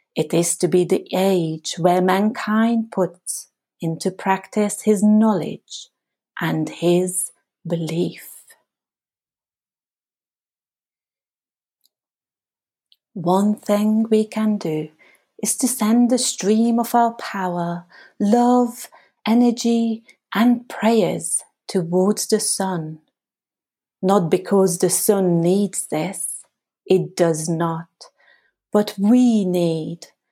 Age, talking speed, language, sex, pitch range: 30-49, 95 wpm, English, female, 175-225 Hz